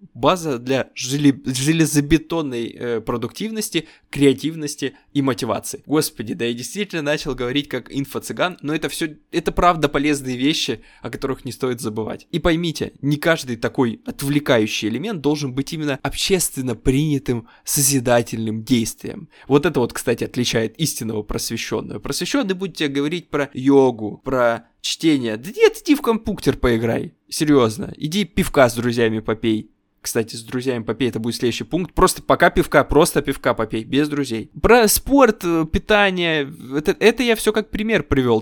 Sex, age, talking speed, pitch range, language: male, 20-39, 145 wpm, 125-180 Hz, Russian